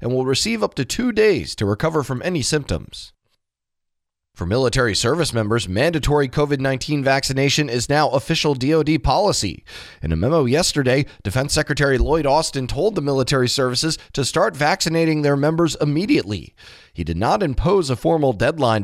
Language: English